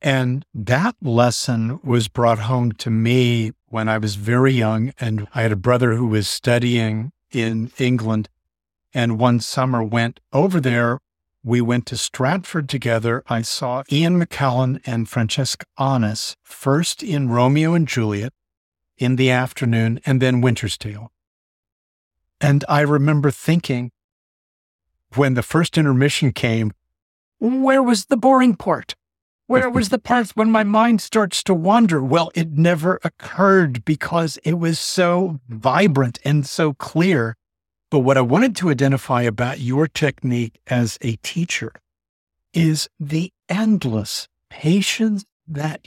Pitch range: 115-160 Hz